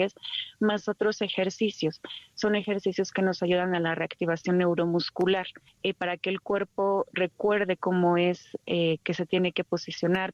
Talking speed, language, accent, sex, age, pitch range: 150 wpm, Spanish, Mexican, female, 30-49, 170-195 Hz